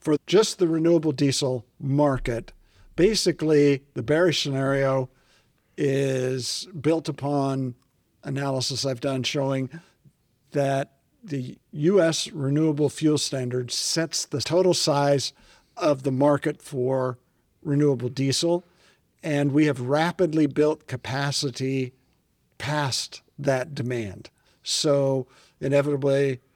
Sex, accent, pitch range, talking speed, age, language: male, American, 130-150 Hz, 100 wpm, 50-69, English